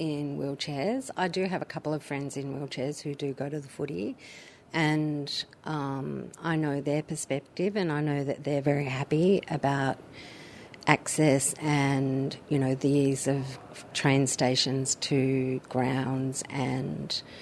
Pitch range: 135-155 Hz